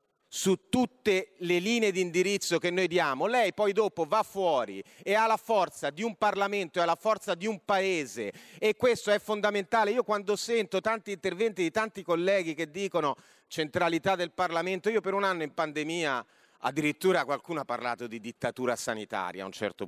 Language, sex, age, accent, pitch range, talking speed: Italian, male, 40-59, native, 155-230 Hz, 180 wpm